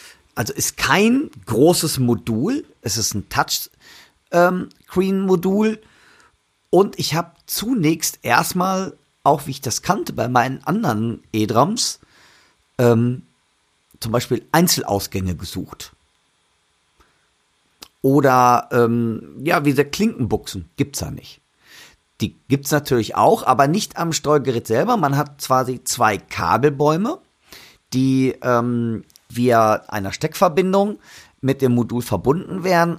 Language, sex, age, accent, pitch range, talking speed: German, male, 40-59, German, 115-155 Hz, 120 wpm